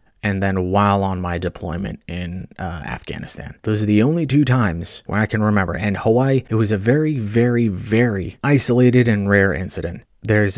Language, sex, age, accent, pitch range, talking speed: English, male, 30-49, American, 95-115 Hz, 180 wpm